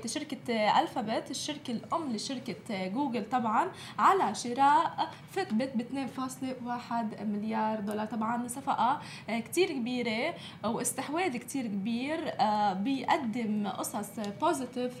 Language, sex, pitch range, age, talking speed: Arabic, female, 220-275 Hz, 20-39, 90 wpm